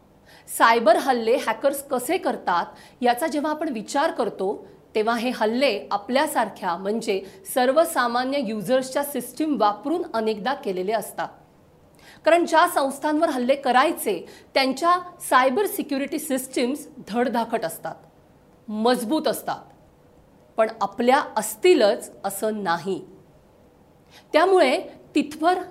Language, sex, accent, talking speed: Marathi, female, native, 100 wpm